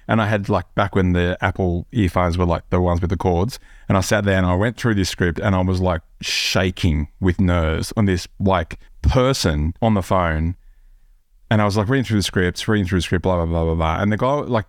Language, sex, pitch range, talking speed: English, male, 85-110 Hz, 250 wpm